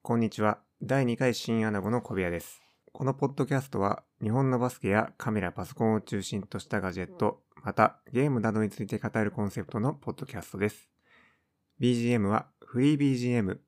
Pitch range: 95-120 Hz